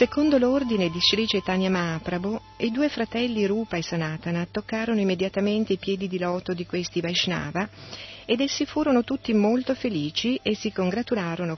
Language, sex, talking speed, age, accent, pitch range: Italian, female, 155 wpm, 40-59, native, 160-205 Hz